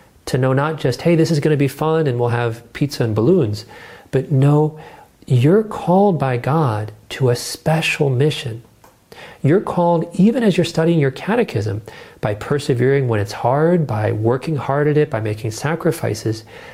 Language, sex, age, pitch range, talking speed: English, male, 40-59, 115-160 Hz, 170 wpm